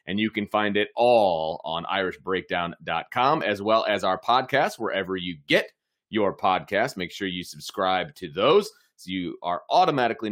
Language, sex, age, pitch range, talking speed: English, male, 30-49, 95-130 Hz, 165 wpm